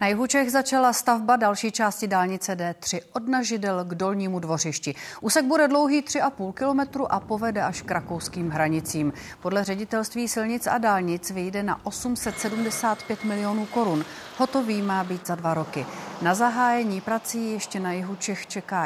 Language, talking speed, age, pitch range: Czech, 155 wpm, 40-59, 175-225 Hz